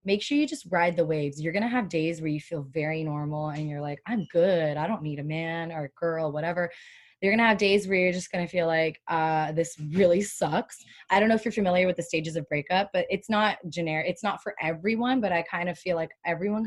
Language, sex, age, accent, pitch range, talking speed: English, female, 20-39, American, 160-205 Hz, 265 wpm